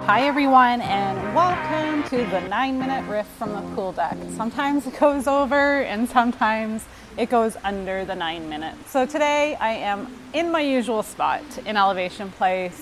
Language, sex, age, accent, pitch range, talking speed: English, female, 30-49, American, 190-260 Hz, 170 wpm